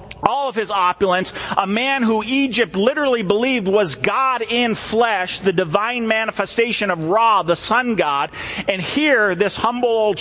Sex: male